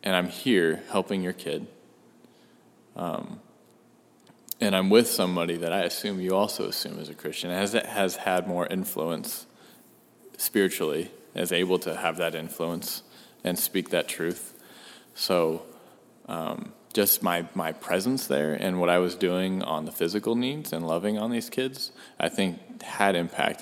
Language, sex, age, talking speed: English, male, 20-39, 155 wpm